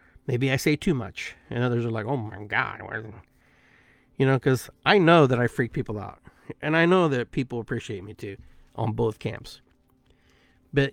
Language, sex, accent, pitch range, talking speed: English, male, American, 115-135 Hz, 185 wpm